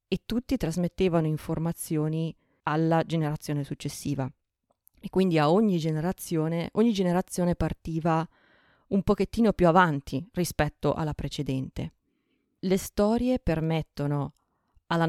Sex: female